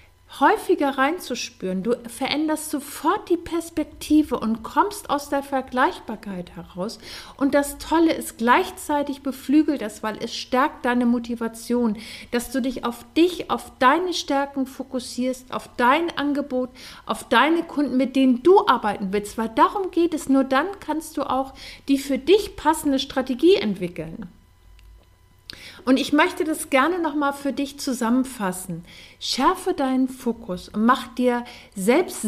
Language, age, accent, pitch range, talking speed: German, 50-69, German, 235-300 Hz, 140 wpm